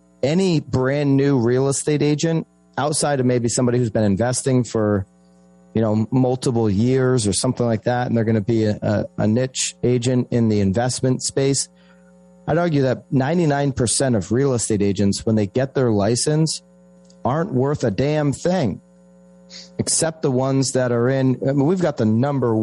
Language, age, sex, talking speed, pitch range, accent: English, 30-49, male, 170 wpm, 105-130 Hz, American